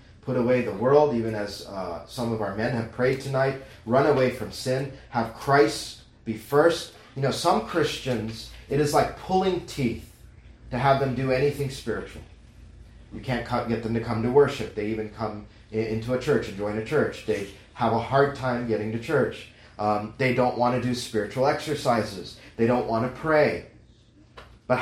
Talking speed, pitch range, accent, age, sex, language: 185 wpm, 110-140 Hz, American, 30-49, male, English